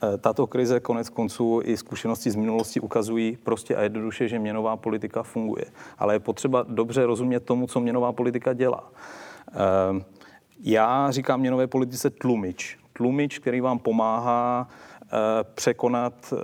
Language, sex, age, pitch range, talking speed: Slovak, male, 40-59, 110-125 Hz, 130 wpm